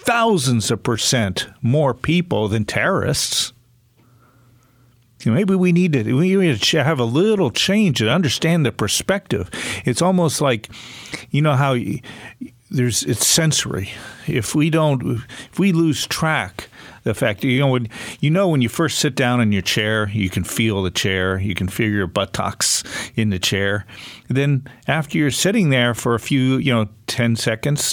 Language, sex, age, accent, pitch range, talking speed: English, male, 50-69, American, 110-145 Hz, 170 wpm